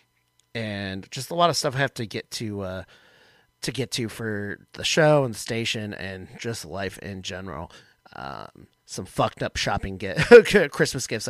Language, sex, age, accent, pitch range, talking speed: English, male, 30-49, American, 100-120 Hz, 180 wpm